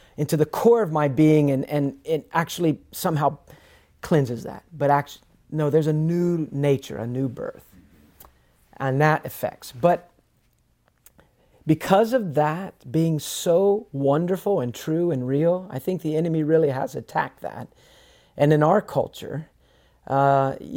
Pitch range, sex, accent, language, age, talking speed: 135-170 Hz, male, American, English, 40-59, 145 wpm